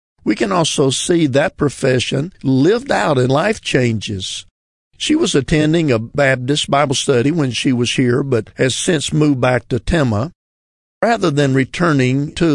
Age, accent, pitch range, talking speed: 50-69, American, 125-150 Hz, 160 wpm